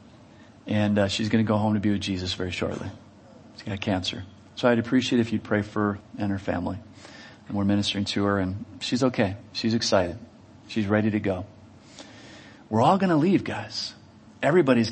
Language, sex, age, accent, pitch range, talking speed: English, male, 40-59, American, 105-180 Hz, 195 wpm